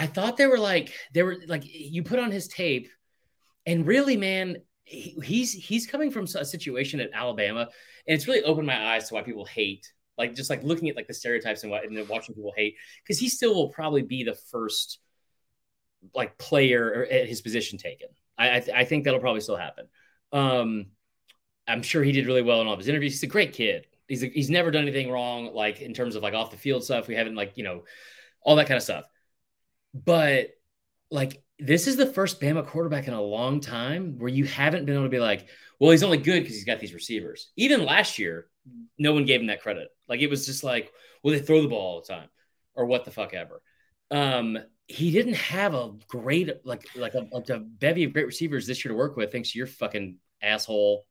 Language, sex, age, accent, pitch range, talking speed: English, male, 30-49, American, 120-170 Hz, 230 wpm